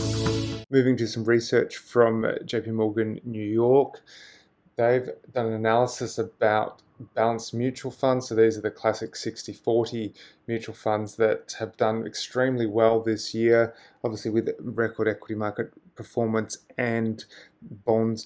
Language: English